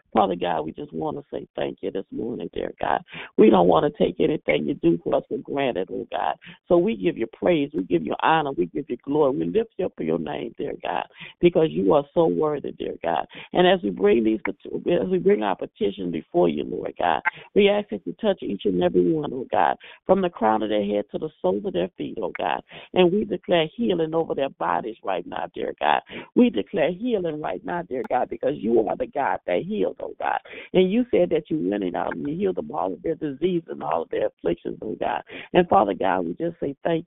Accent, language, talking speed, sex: American, English, 250 wpm, female